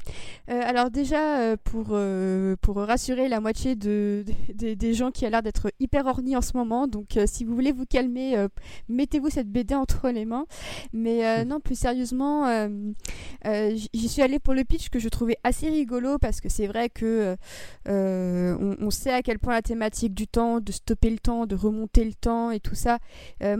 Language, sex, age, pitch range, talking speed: French, female, 20-39, 215-255 Hz, 215 wpm